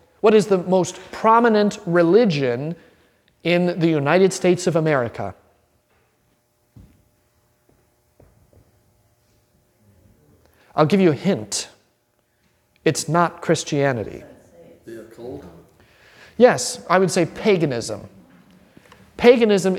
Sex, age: male, 40-59